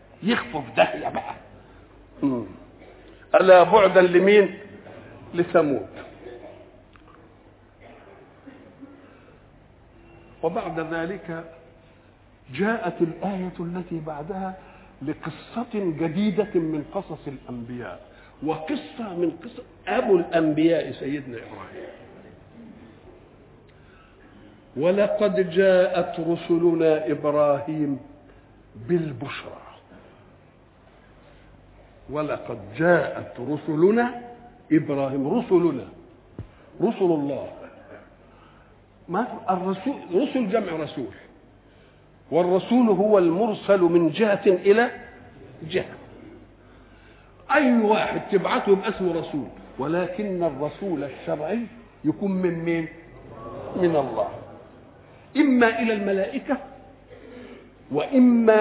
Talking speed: 65 wpm